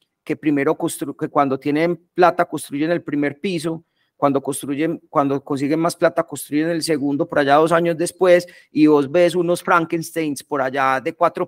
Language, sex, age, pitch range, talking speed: Spanish, male, 30-49, 135-170 Hz, 180 wpm